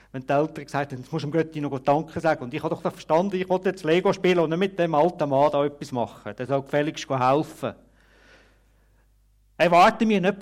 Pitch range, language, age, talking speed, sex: 105-160 Hz, German, 50-69, 205 wpm, male